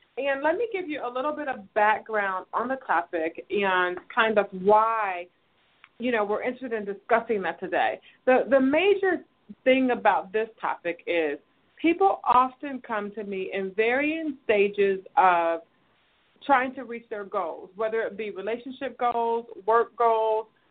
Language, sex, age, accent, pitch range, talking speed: English, female, 30-49, American, 200-255 Hz, 155 wpm